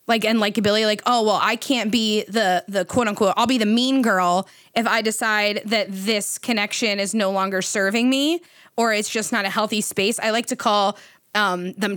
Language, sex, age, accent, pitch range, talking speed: English, female, 20-39, American, 205-245 Hz, 210 wpm